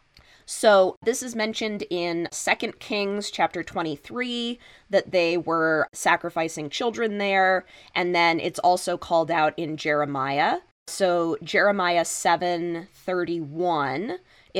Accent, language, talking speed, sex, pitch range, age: American, English, 105 wpm, female, 155-195 Hz, 20-39